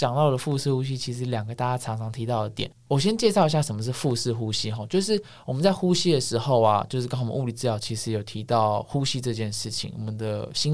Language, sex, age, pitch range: Chinese, male, 20-39, 115-160 Hz